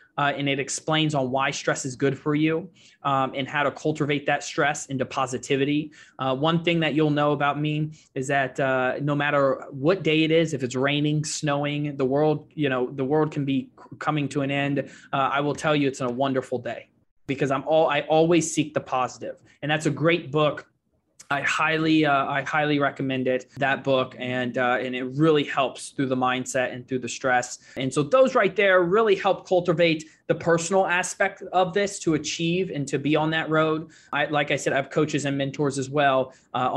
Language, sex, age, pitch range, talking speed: English, male, 20-39, 135-160 Hz, 210 wpm